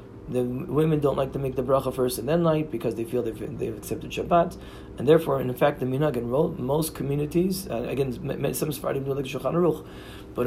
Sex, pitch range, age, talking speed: male, 120-155 Hz, 30-49, 185 wpm